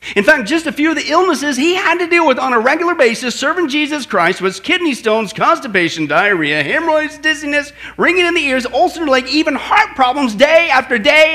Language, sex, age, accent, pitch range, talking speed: English, male, 40-59, American, 240-330 Hz, 205 wpm